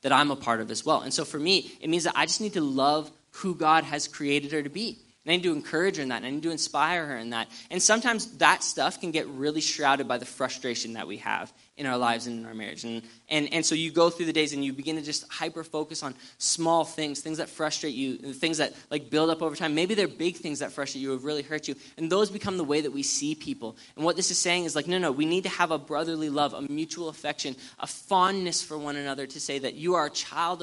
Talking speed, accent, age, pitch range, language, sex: 280 wpm, American, 10-29, 135-170 Hz, English, male